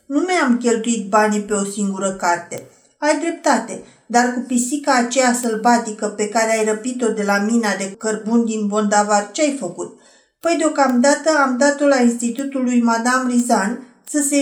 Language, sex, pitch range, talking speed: Romanian, female, 225-280 Hz, 160 wpm